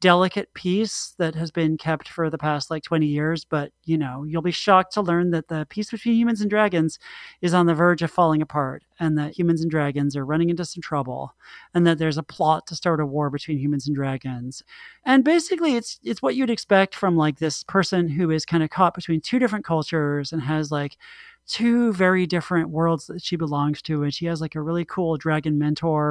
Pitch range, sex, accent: 155-195 Hz, male, American